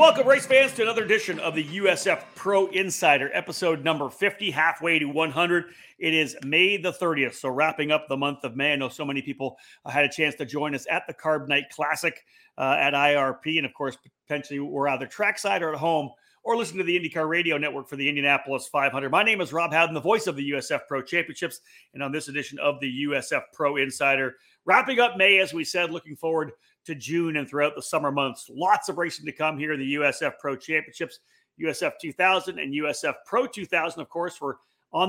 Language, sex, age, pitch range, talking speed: English, male, 40-59, 140-175 Hz, 215 wpm